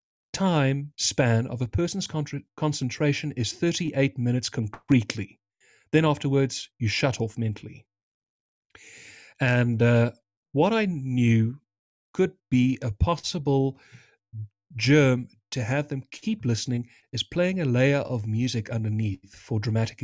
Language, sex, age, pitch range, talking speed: English, male, 40-59, 115-145 Hz, 120 wpm